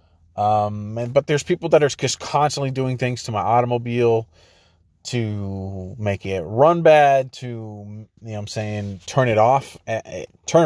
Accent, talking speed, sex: American, 170 wpm, male